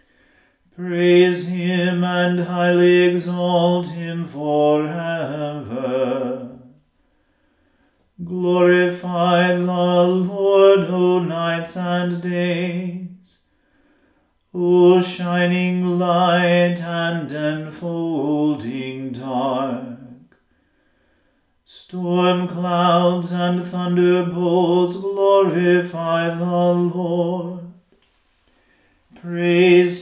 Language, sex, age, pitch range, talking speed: English, male, 40-59, 170-180 Hz, 55 wpm